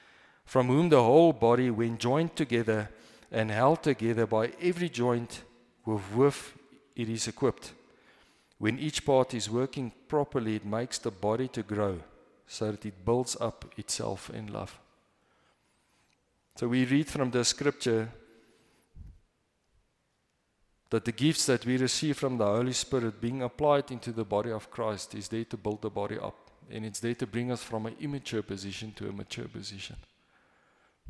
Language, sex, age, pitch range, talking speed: English, male, 40-59, 110-130 Hz, 160 wpm